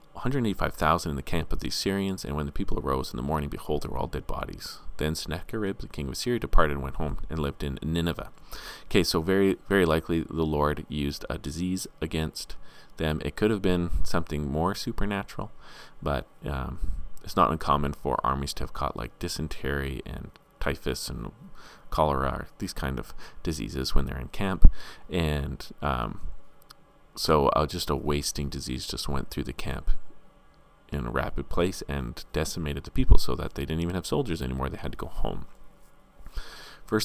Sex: male